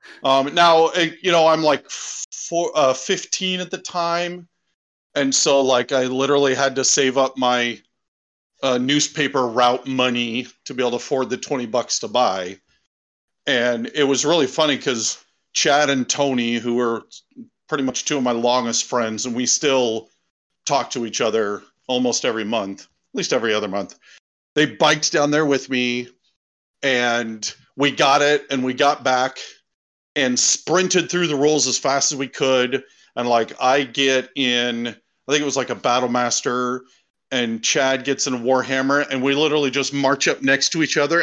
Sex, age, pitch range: male, 40-59, 125-150 Hz